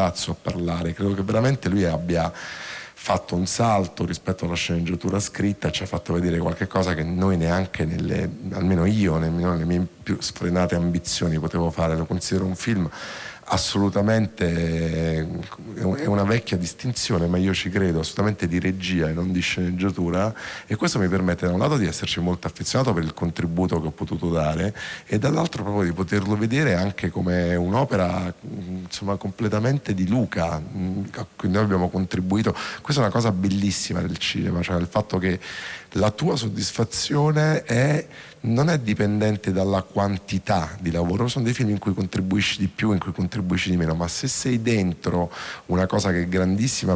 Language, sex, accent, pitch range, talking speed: Italian, male, native, 85-105 Hz, 170 wpm